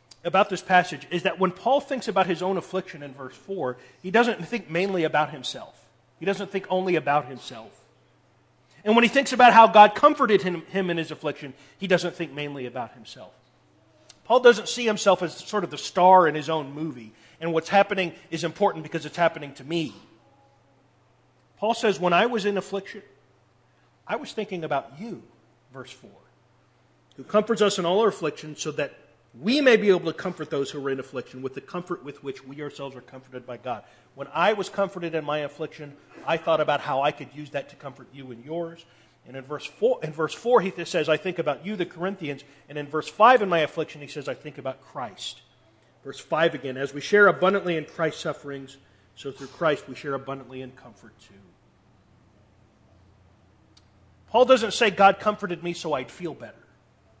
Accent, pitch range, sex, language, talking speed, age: American, 135-190 Hz, male, English, 200 wpm, 40-59